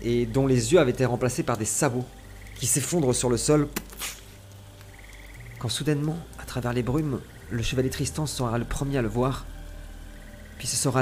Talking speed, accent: 180 wpm, French